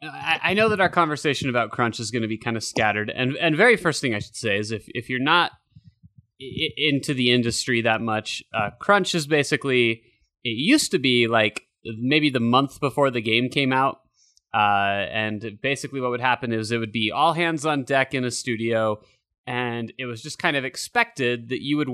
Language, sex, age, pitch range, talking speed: English, male, 20-39, 115-140 Hz, 210 wpm